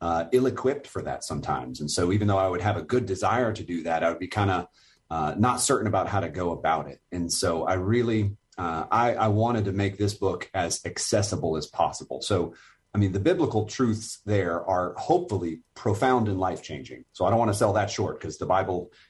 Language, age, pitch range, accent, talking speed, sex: English, 30-49, 90-110 Hz, American, 220 wpm, male